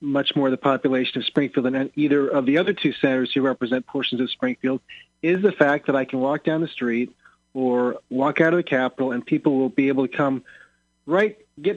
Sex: male